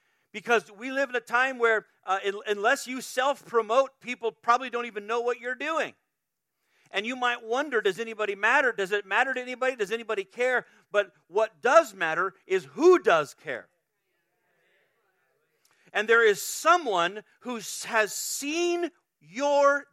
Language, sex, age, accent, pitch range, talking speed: English, male, 40-59, American, 185-245 Hz, 150 wpm